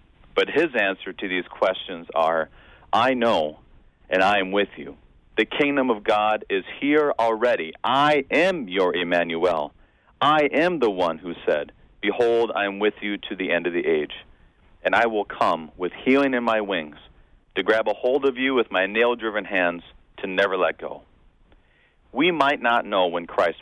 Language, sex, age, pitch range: English, male, 40-59, 85-120 Hz